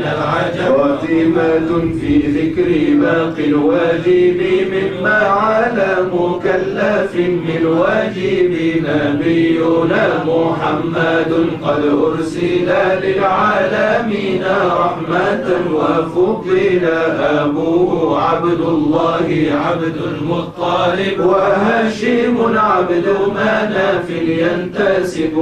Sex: male